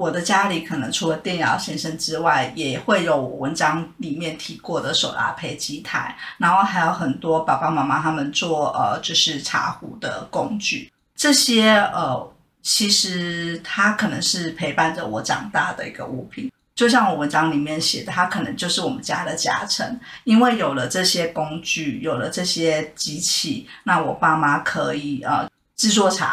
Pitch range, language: 165-210 Hz, Chinese